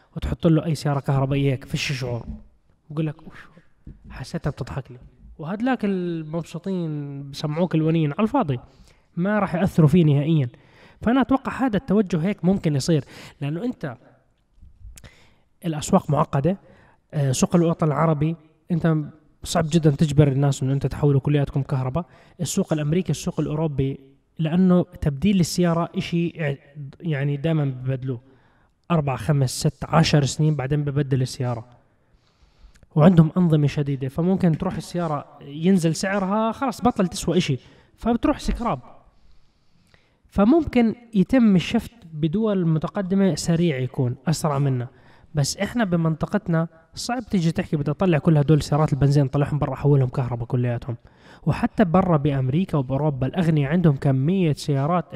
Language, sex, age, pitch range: Arabic, male, 20-39, 140-180 Hz